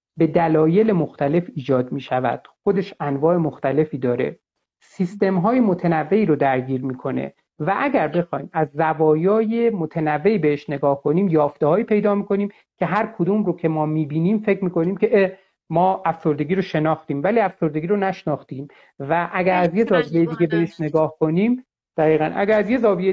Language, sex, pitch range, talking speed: Persian, male, 155-210 Hz, 165 wpm